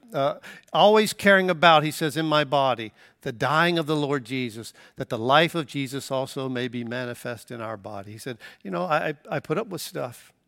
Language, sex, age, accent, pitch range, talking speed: English, male, 60-79, American, 125-165 Hz, 210 wpm